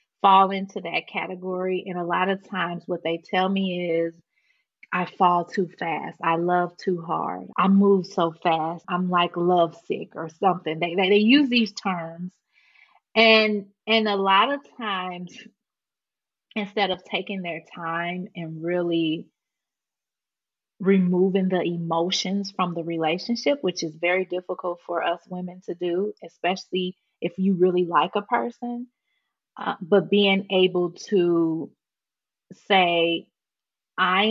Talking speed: 140 wpm